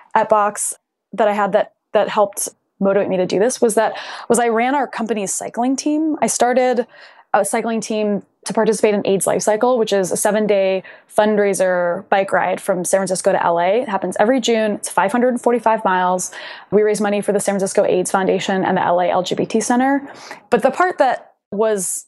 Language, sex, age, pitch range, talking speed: English, female, 10-29, 200-250 Hz, 190 wpm